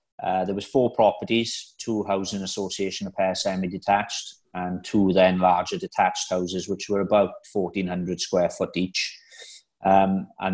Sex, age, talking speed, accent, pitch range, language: male, 30-49, 155 wpm, British, 90-100 Hz, English